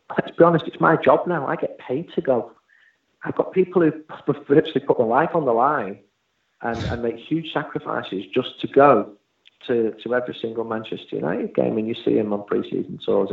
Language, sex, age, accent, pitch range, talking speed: English, male, 40-59, British, 100-125 Hz, 210 wpm